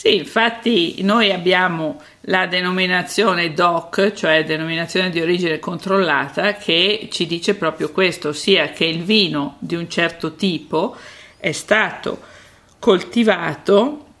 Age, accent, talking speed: 50-69, native, 120 wpm